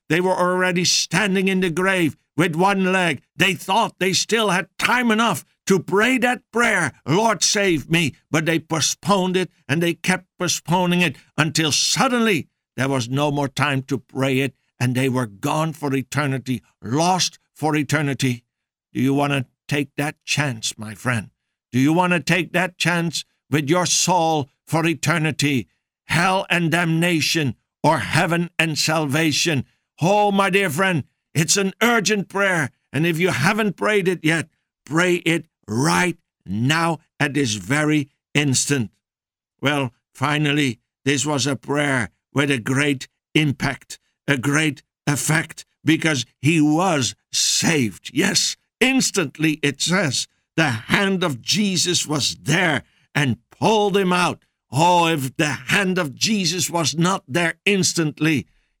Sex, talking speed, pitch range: male, 145 wpm, 140-180 Hz